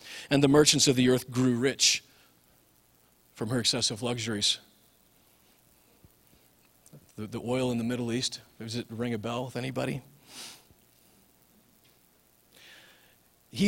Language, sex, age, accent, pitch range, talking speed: English, male, 40-59, American, 120-170 Hz, 120 wpm